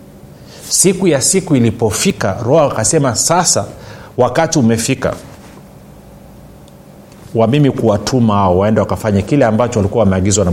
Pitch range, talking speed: 105-140 Hz, 110 wpm